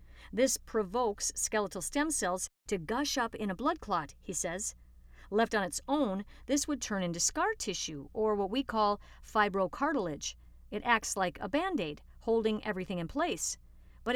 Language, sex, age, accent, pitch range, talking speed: English, female, 50-69, American, 185-255 Hz, 165 wpm